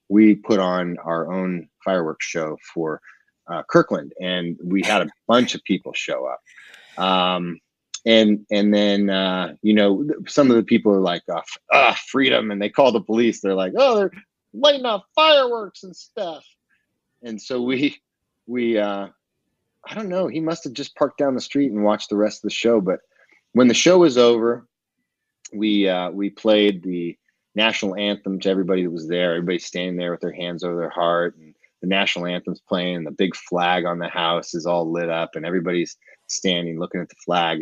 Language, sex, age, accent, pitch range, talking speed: English, male, 30-49, American, 90-115 Hz, 195 wpm